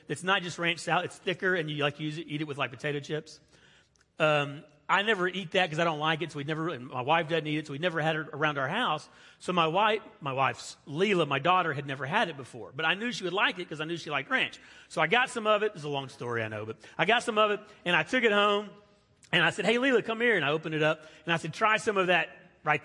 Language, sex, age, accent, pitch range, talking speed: English, male, 40-59, American, 140-185 Hz, 300 wpm